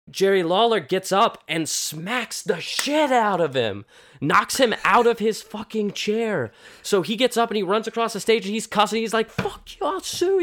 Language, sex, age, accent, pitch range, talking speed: English, male, 20-39, American, 140-220 Hz, 215 wpm